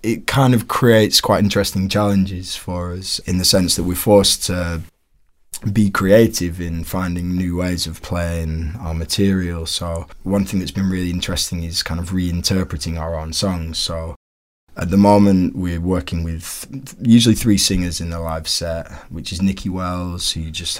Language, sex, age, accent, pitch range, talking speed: English, male, 20-39, British, 80-95 Hz, 175 wpm